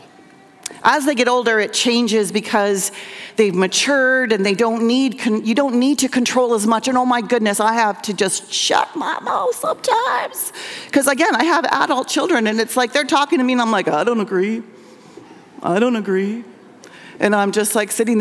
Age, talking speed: 40-59, 195 wpm